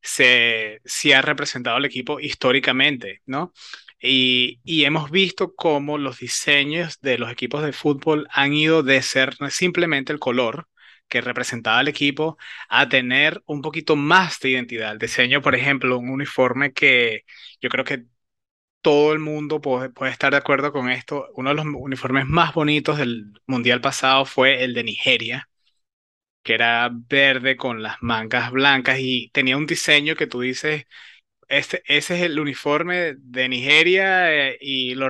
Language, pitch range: Spanish, 125-150 Hz